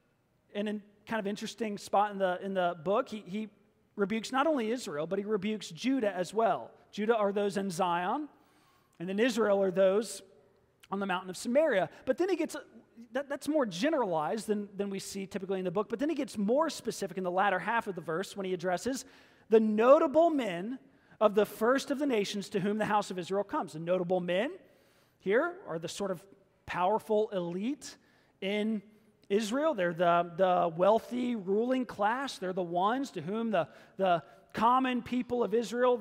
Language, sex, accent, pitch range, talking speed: English, male, American, 190-245 Hz, 195 wpm